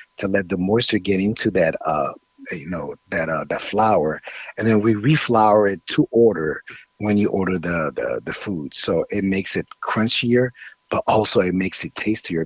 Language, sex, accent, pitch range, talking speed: English, male, American, 95-110 Hz, 190 wpm